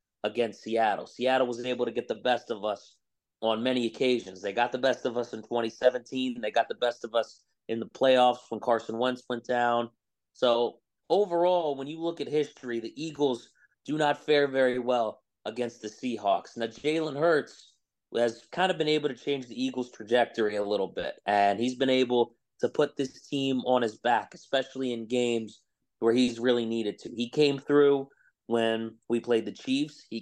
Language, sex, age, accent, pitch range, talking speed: English, male, 30-49, American, 115-140 Hz, 195 wpm